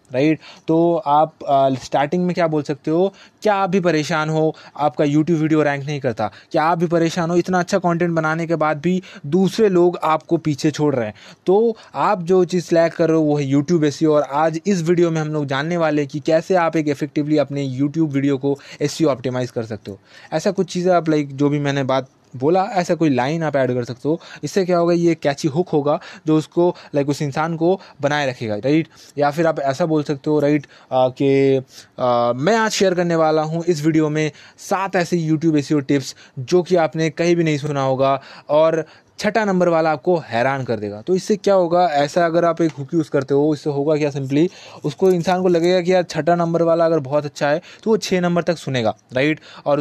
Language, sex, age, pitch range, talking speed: Hindi, male, 20-39, 145-175 Hz, 225 wpm